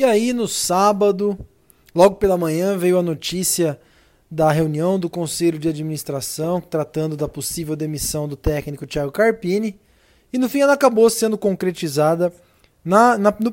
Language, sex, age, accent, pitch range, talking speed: Portuguese, male, 20-39, Brazilian, 165-200 Hz, 140 wpm